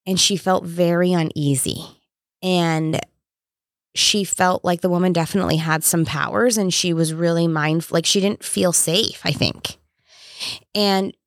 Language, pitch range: English, 170-215 Hz